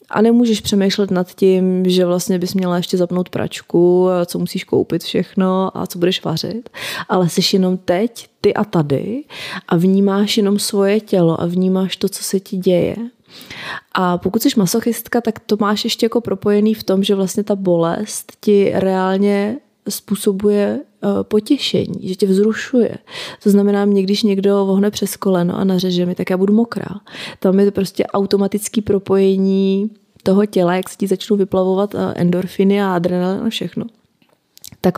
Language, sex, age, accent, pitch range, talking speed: Czech, female, 20-39, native, 185-210 Hz, 165 wpm